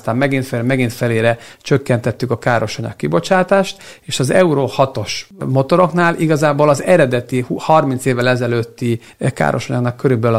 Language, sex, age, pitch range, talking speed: Hungarian, male, 50-69, 120-155 Hz, 125 wpm